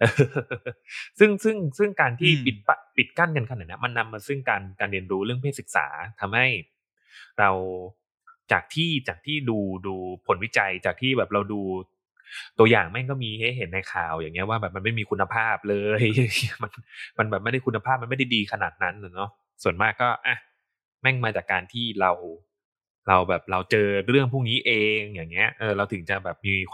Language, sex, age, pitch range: Thai, male, 20-39, 100-140 Hz